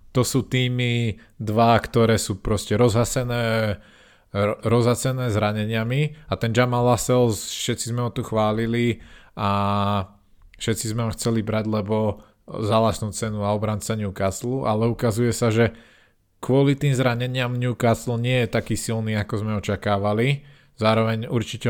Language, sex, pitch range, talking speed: Slovak, male, 100-115 Hz, 130 wpm